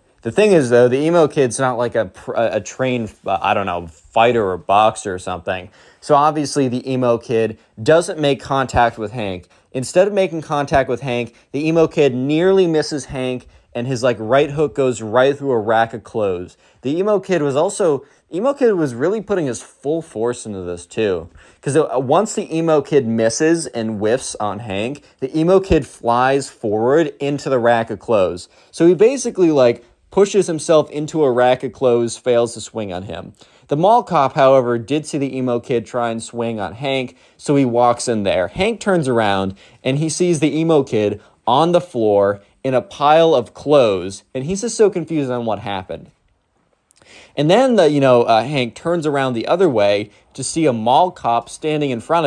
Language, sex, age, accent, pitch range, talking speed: English, male, 20-39, American, 115-150 Hz, 195 wpm